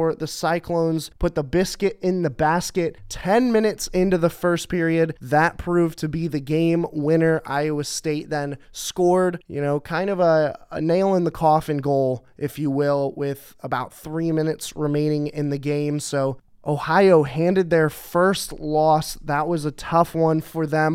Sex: male